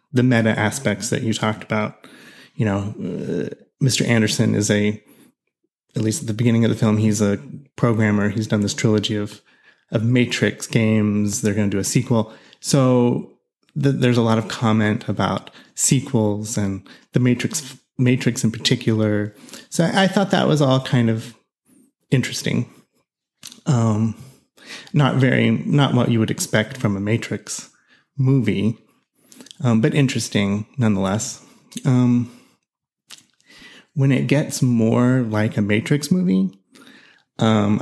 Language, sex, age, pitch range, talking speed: English, male, 20-39, 110-140 Hz, 140 wpm